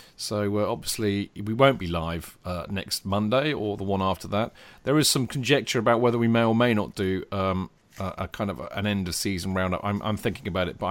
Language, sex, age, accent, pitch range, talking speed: English, male, 40-59, British, 105-145 Hz, 235 wpm